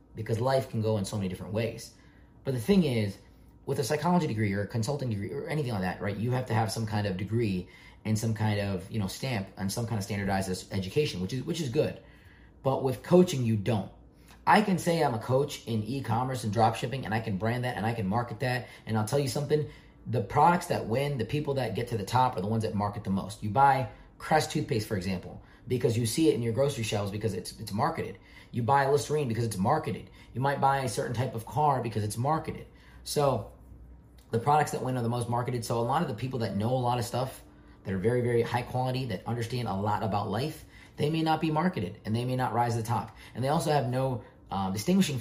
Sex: male